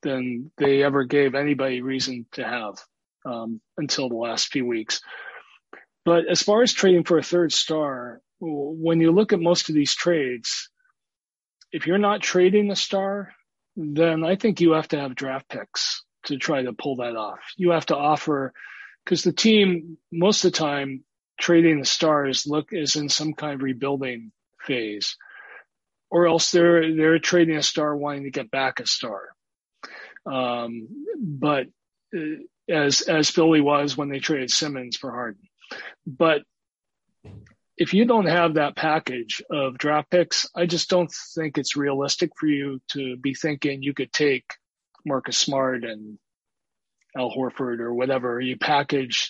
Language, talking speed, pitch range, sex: English, 160 wpm, 135-170 Hz, male